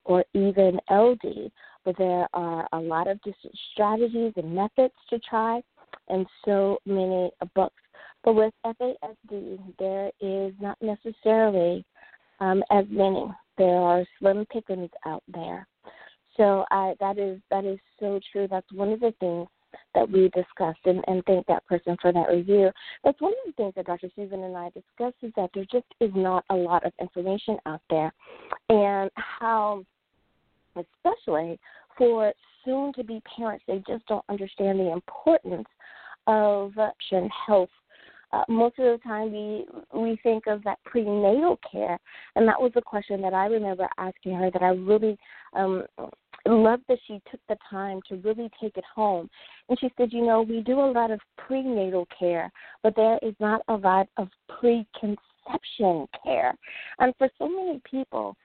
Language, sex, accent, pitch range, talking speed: English, female, American, 185-230 Hz, 165 wpm